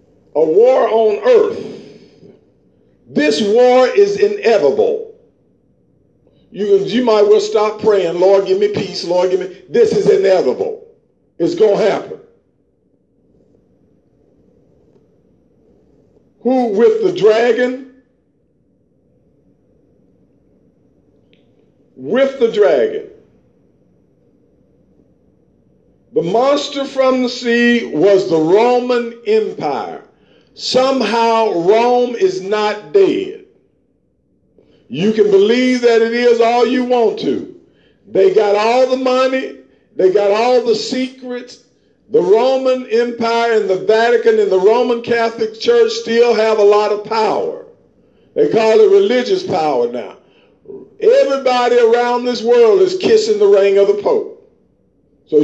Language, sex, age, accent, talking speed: English, male, 50-69, American, 115 wpm